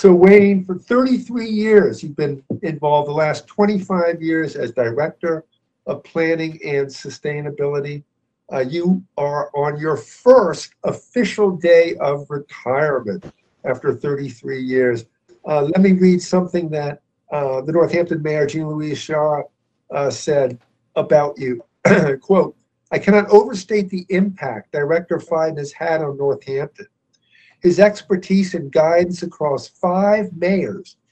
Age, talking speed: 50-69, 125 wpm